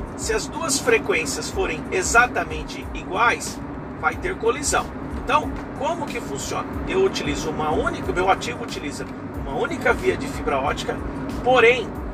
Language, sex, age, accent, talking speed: Portuguese, male, 50-69, Brazilian, 140 wpm